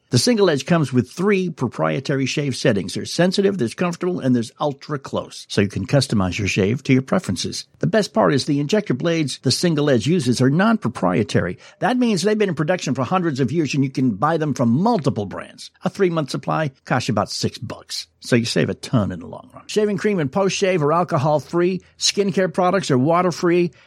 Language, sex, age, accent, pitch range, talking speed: English, male, 60-79, American, 115-165 Hz, 210 wpm